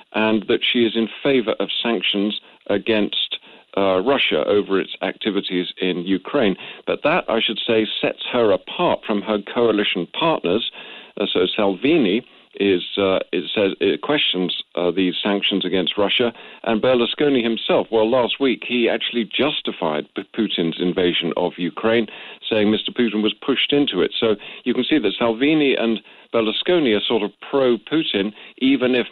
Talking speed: 155 wpm